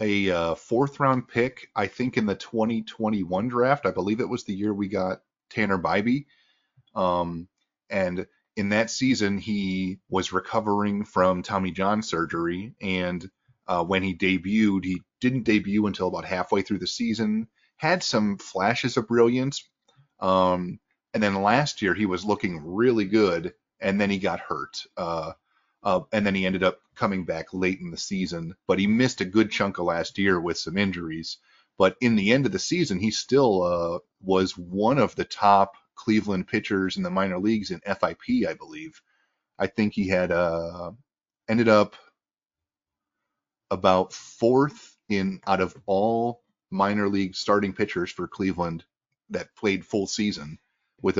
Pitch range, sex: 95-110 Hz, male